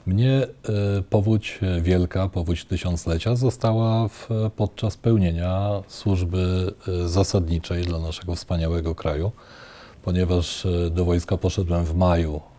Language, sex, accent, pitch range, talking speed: Polish, male, native, 85-110 Hz, 95 wpm